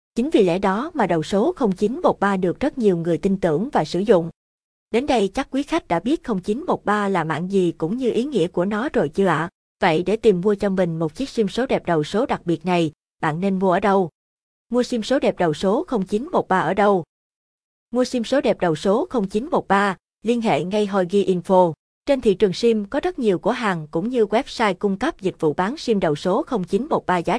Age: 20-39